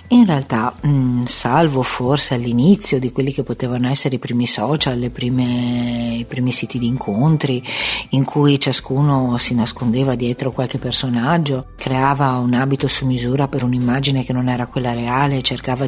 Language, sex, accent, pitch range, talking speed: Italian, female, native, 125-145 Hz, 155 wpm